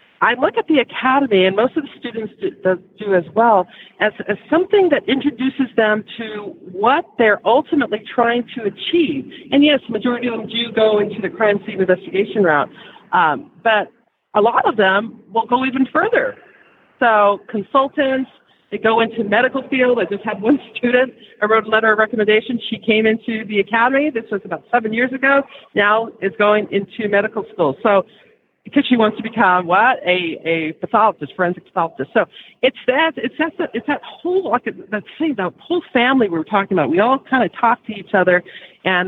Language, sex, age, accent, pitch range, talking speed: English, female, 40-59, American, 200-255 Hz, 190 wpm